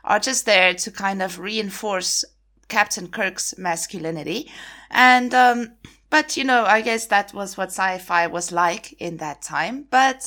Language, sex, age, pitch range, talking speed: English, female, 20-39, 185-250 Hz, 160 wpm